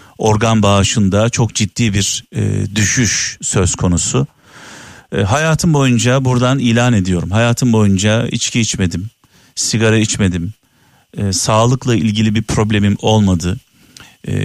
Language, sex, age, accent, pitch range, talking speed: Turkish, male, 50-69, native, 100-120 Hz, 115 wpm